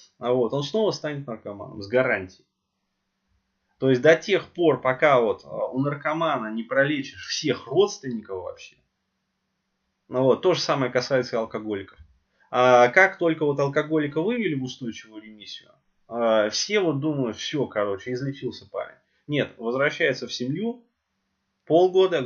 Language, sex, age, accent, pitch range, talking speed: Russian, male, 20-39, native, 115-155 Hz, 135 wpm